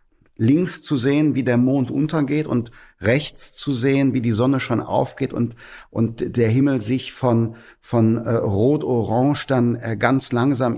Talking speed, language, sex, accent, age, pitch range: 160 wpm, German, male, German, 50-69, 105-130 Hz